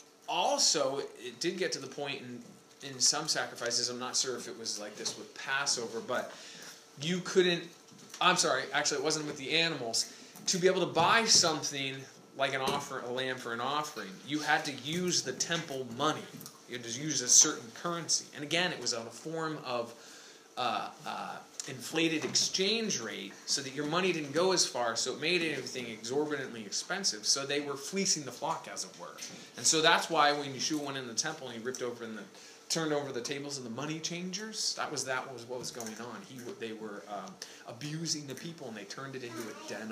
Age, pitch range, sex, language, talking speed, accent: 20-39, 130-170 Hz, male, English, 210 wpm, American